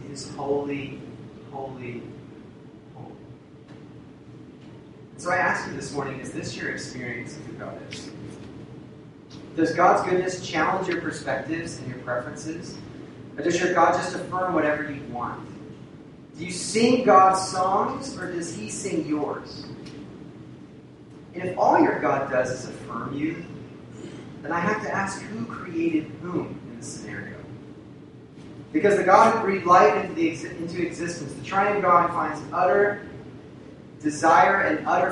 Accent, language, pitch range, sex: American, English, 145-185 Hz, male